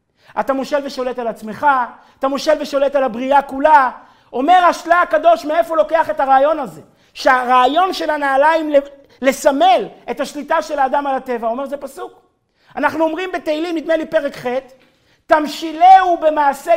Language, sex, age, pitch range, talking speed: Hebrew, male, 50-69, 255-335 Hz, 145 wpm